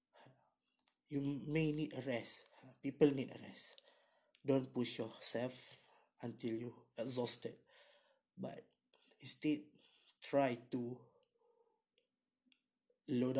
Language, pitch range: Malay, 125-150 Hz